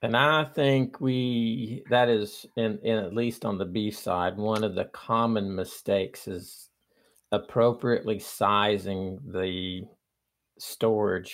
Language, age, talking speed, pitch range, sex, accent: English, 50-69, 125 wpm, 95-115 Hz, male, American